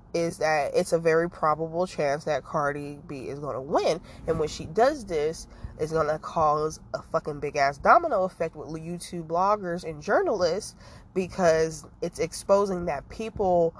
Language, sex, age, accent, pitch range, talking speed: English, female, 20-39, American, 150-180 Hz, 165 wpm